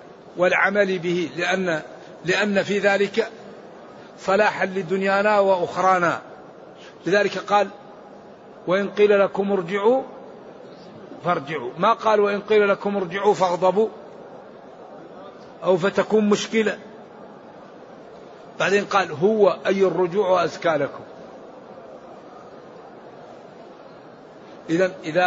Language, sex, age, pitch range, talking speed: Arabic, male, 50-69, 175-205 Hz, 80 wpm